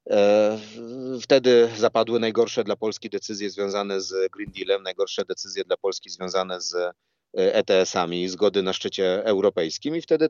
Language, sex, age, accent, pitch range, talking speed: Polish, male, 30-49, native, 95-125 Hz, 135 wpm